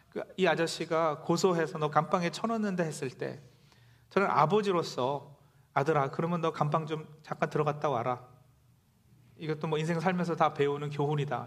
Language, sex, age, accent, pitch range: Korean, male, 40-59, native, 125-170 Hz